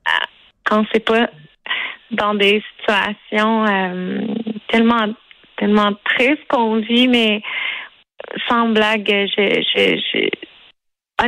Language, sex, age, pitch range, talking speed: French, female, 30-49, 210-240 Hz, 95 wpm